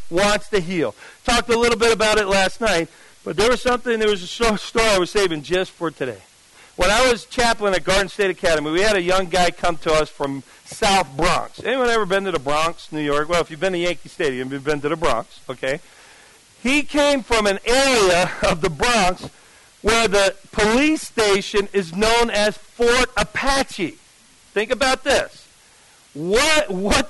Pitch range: 190-250 Hz